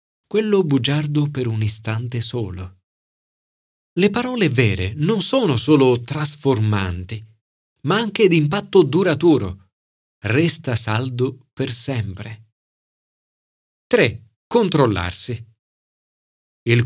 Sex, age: male, 40-59